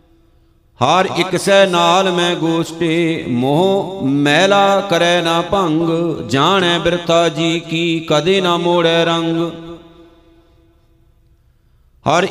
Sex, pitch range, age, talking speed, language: male, 165-175 Hz, 50-69, 95 wpm, Punjabi